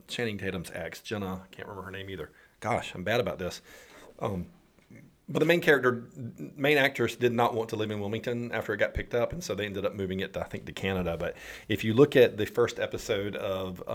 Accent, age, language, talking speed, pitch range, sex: American, 40-59, English, 235 wpm, 95-120 Hz, male